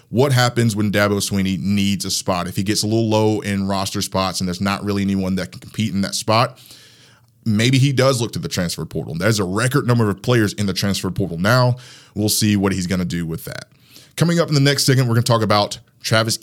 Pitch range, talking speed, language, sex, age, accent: 100-125 Hz, 250 wpm, English, male, 20-39, American